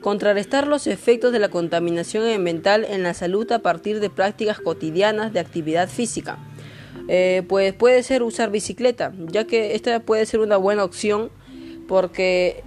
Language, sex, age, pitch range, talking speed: Spanish, female, 20-39, 175-215 Hz, 155 wpm